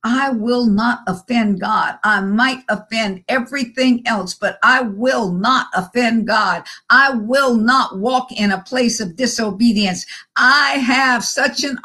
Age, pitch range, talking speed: 50-69, 235-300 Hz, 145 wpm